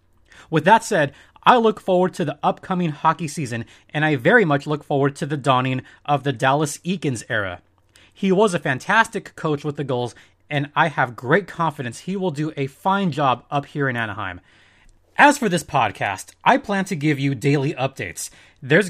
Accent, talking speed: American, 190 wpm